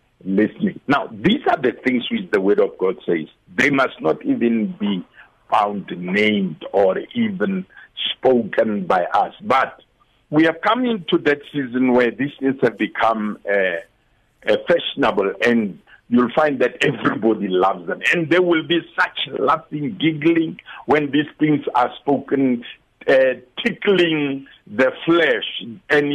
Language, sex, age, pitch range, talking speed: English, male, 60-79, 120-170 Hz, 140 wpm